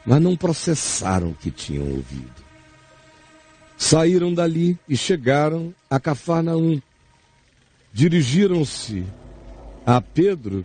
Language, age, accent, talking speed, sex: English, 60-79, Brazilian, 90 wpm, male